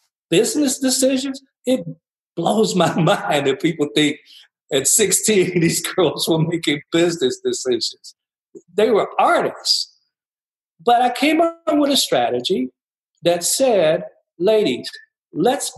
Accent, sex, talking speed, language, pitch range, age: American, male, 120 wpm, English, 165-255 Hz, 50-69